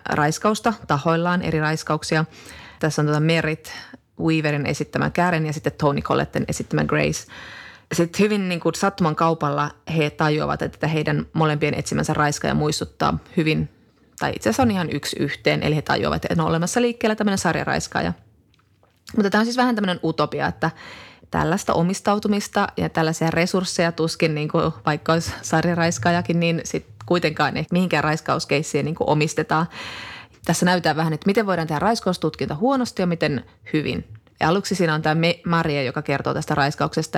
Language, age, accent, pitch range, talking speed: Finnish, 30-49, native, 155-180 Hz, 155 wpm